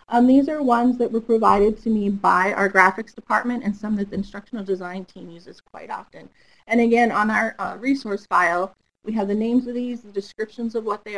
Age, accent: 30-49, American